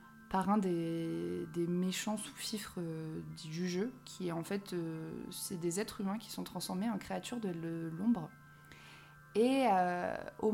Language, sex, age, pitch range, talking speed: French, female, 20-39, 180-215 Hz, 160 wpm